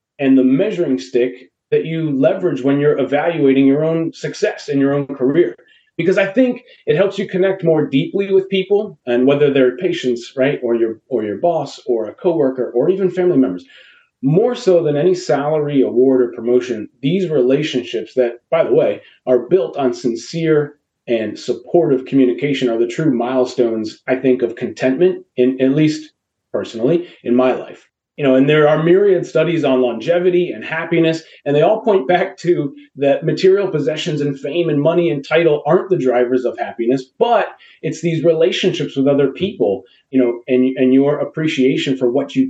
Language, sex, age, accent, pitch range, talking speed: English, male, 30-49, American, 130-165 Hz, 180 wpm